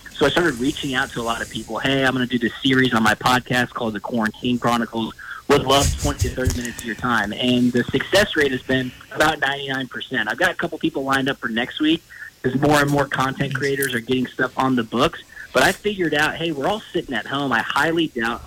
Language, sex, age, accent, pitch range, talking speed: English, male, 20-39, American, 125-140 Hz, 245 wpm